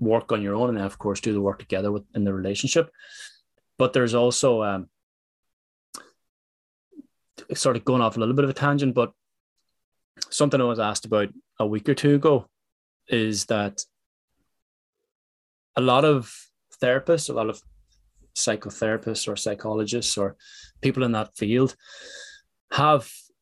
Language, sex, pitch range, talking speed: English, male, 105-130 Hz, 150 wpm